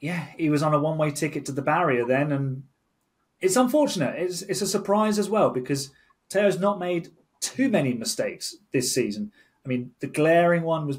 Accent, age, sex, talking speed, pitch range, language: British, 30-49, male, 195 wpm, 130-175 Hz, English